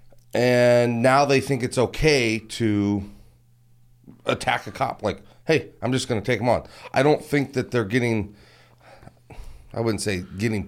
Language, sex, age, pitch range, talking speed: English, male, 30-49, 100-125 Hz, 165 wpm